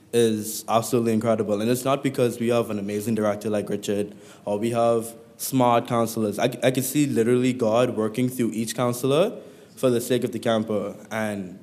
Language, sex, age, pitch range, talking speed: English, male, 20-39, 110-125 Hz, 185 wpm